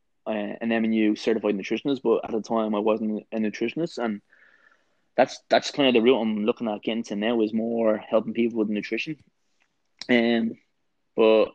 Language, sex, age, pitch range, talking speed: English, male, 20-39, 110-120 Hz, 190 wpm